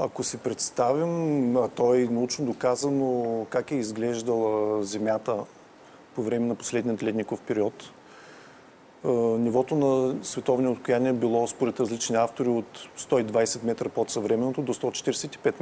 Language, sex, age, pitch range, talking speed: Bulgarian, male, 40-59, 115-140 Hz, 125 wpm